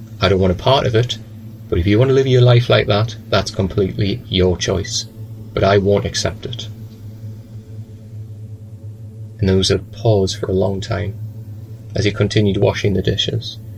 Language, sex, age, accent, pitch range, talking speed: English, male, 30-49, British, 100-115 Hz, 180 wpm